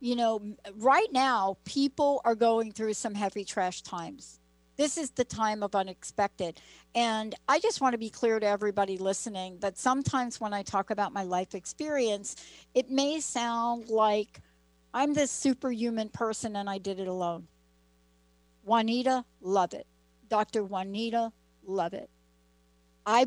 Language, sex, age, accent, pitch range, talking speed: English, female, 60-79, American, 170-225 Hz, 150 wpm